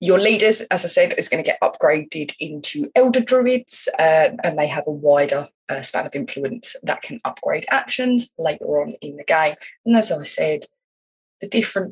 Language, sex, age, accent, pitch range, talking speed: English, female, 20-39, British, 165-255 Hz, 190 wpm